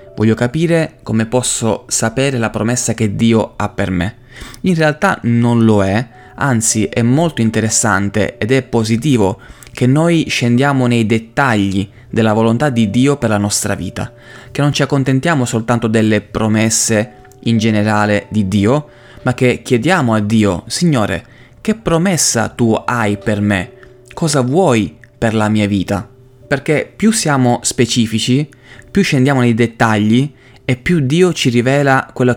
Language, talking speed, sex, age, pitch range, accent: Italian, 150 wpm, male, 20-39, 110-130 Hz, native